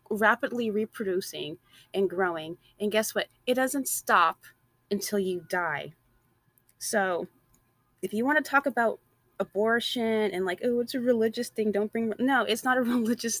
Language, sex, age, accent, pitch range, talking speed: English, female, 20-39, American, 160-210 Hz, 155 wpm